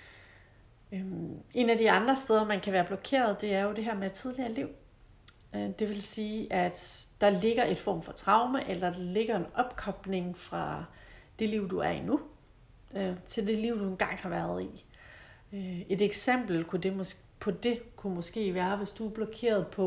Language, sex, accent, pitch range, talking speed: Danish, female, native, 175-215 Hz, 180 wpm